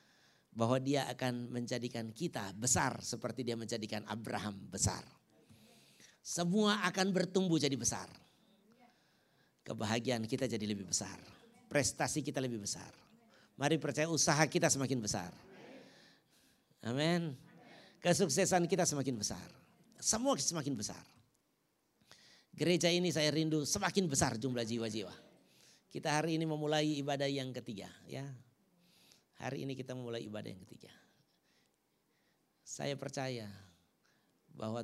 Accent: native